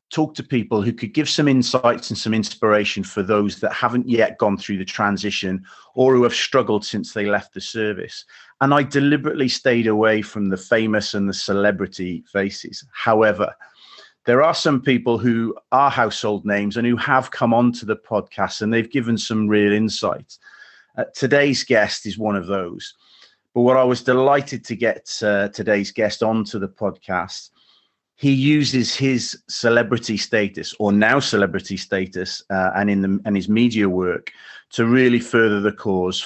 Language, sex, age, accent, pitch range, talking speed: English, male, 40-59, British, 100-120 Hz, 175 wpm